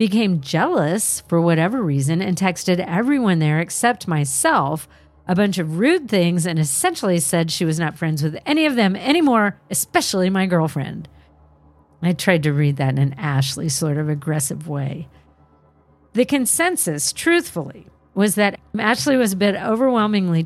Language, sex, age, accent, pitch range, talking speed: English, female, 50-69, American, 150-210 Hz, 155 wpm